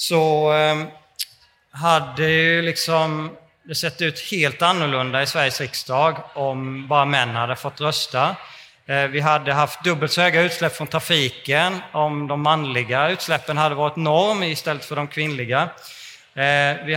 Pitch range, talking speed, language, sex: 135-170 Hz, 140 wpm, Swedish, male